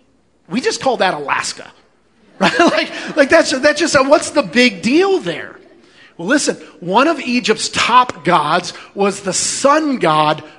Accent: American